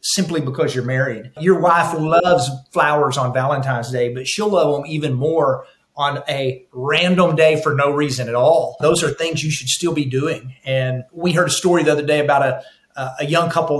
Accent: American